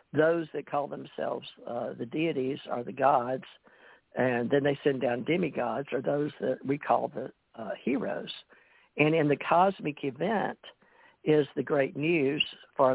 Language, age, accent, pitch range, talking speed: English, 60-79, American, 130-150 Hz, 160 wpm